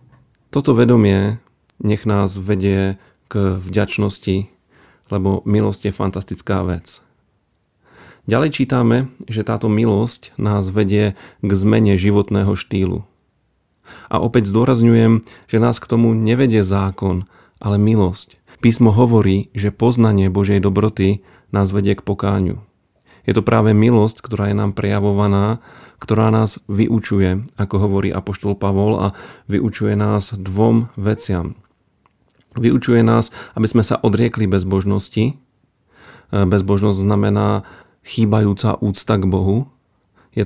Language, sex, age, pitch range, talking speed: Slovak, male, 40-59, 100-110 Hz, 115 wpm